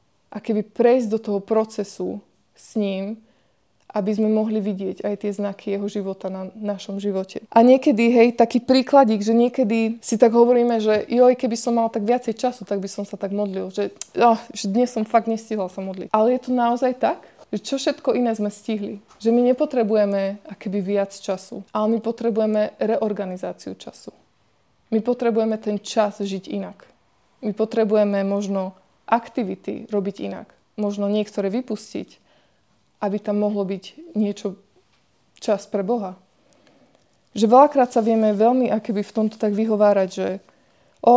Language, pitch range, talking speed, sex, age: Slovak, 205-235 Hz, 165 wpm, female, 20-39